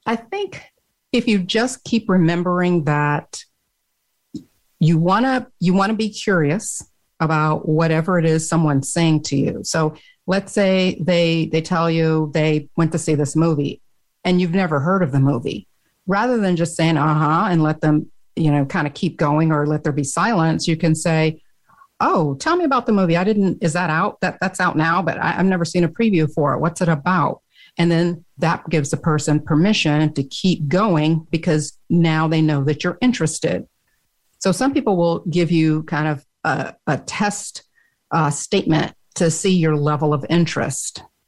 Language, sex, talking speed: English, female, 185 wpm